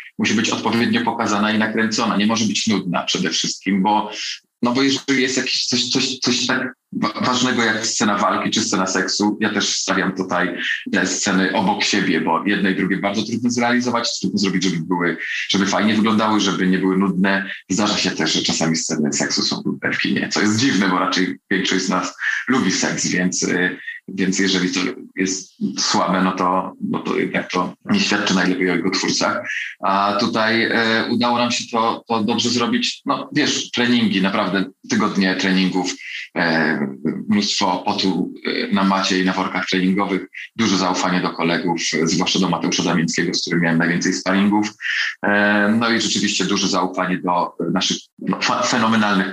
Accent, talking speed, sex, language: native, 170 wpm, male, Polish